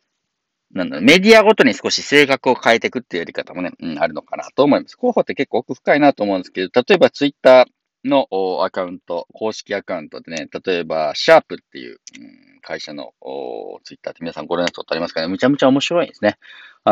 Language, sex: Japanese, male